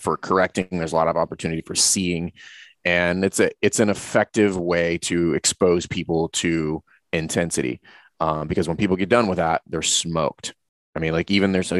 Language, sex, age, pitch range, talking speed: English, male, 30-49, 80-100 Hz, 185 wpm